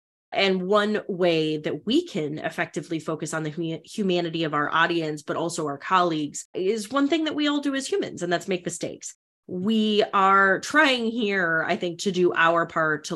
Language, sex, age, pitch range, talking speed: English, female, 30-49, 160-225 Hz, 190 wpm